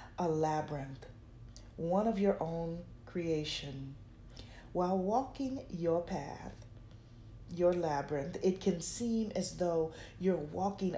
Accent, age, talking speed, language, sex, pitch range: American, 40-59, 110 wpm, English, female, 115-190 Hz